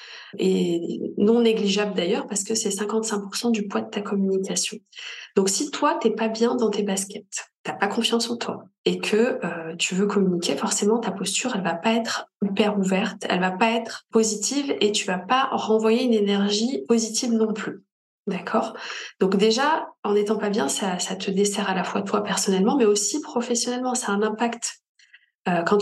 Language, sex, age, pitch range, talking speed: French, female, 20-39, 200-230 Hz, 200 wpm